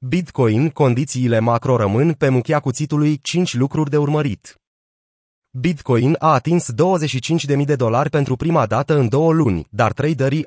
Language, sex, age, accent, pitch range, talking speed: Romanian, male, 30-49, native, 115-150 Hz, 145 wpm